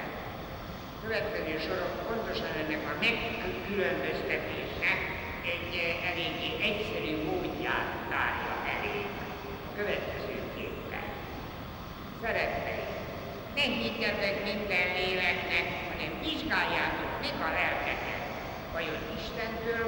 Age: 60-79